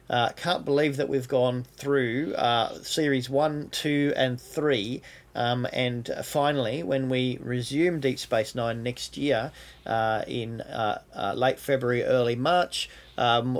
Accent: Australian